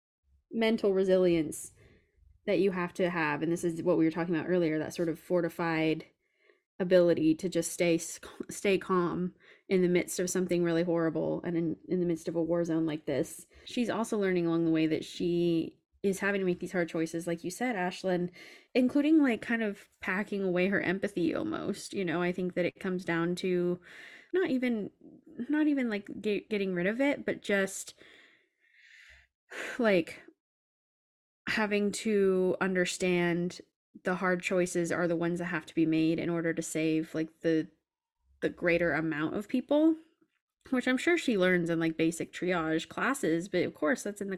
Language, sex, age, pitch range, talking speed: English, female, 20-39, 165-200 Hz, 180 wpm